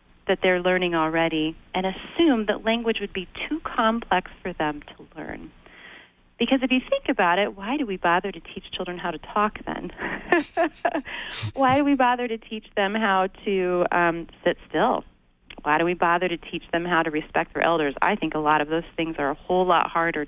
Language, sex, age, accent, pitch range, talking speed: English, female, 30-49, American, 170-230 Hz, 205 wpm